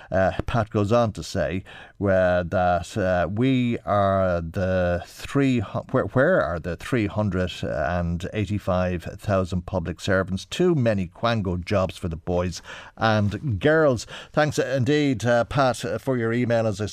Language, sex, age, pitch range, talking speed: English, male, 50-69, 95-120 Hz, 140 wpm